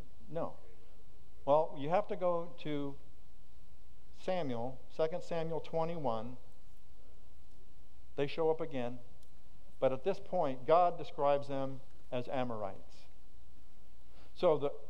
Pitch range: 125-175 Hz